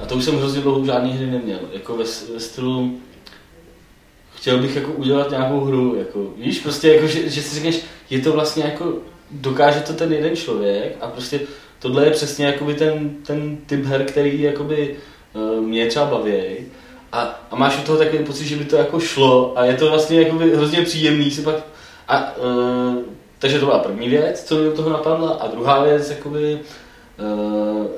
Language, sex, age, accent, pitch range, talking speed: Czech, male, 20-39, native, 110-145 Hz, 185 wpm